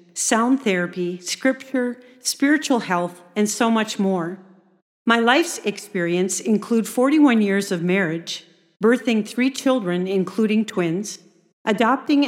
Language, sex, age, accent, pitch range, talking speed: English, female, 50-69, American, 180-245 Hz, 110 wpm